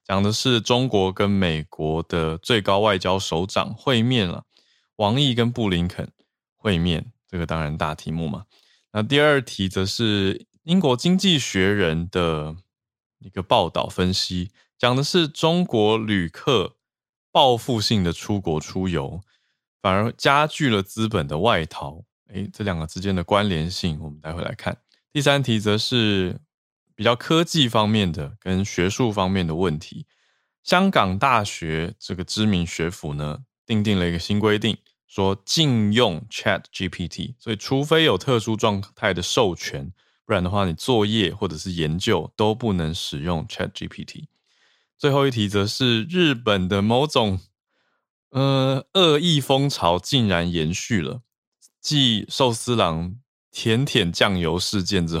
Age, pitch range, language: 20-39, 90-120 Hz, Chinese